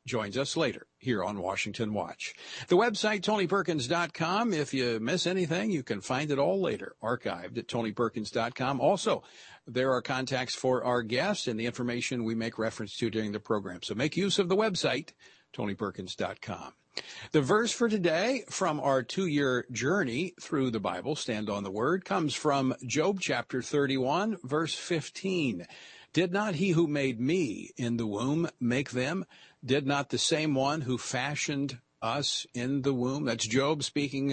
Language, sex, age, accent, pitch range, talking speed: English, male, 50-69, American, 120-170 Hz, 165 wpm